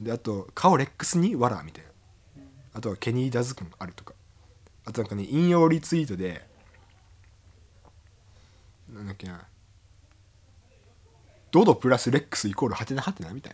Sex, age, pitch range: male, 20-39, 95-125 Hz